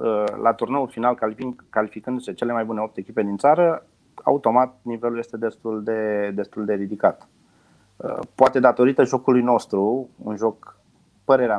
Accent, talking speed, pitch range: native, 135 wpm, 105-125 Hz